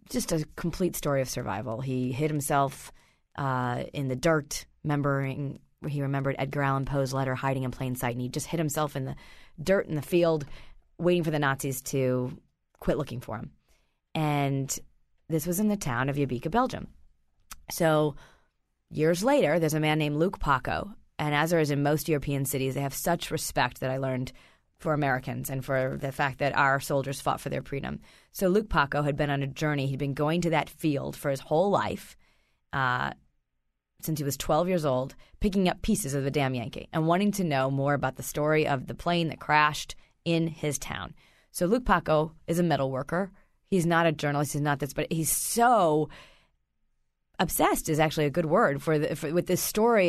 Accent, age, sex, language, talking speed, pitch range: American, 30-49, female, English, 200 wpm, 140-175 Hz